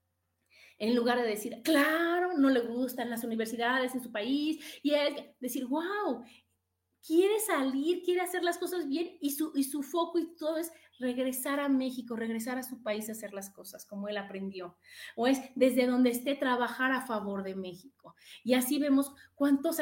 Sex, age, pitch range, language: female, 30-49, 220-275 Hz, Spanish